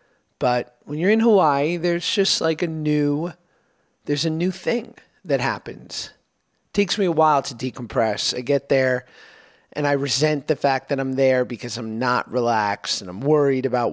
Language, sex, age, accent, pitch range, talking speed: English, male, 30-49, American, 125-170 Hz, 180 wpm